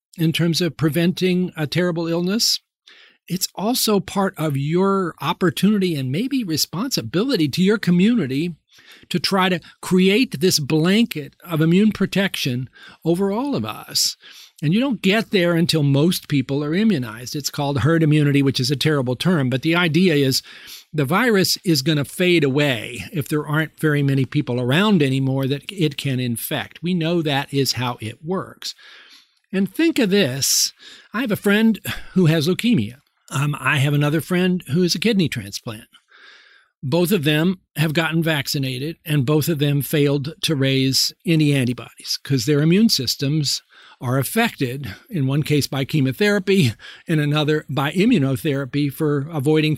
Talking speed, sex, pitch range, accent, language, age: 160 wpm, male, 140-185 Hz, American, English, 50-69